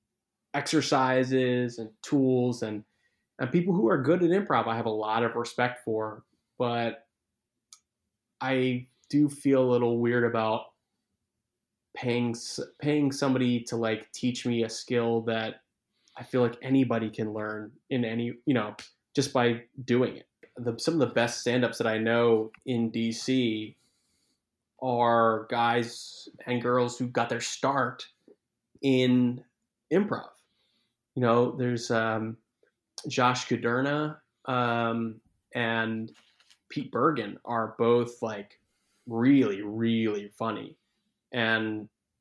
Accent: American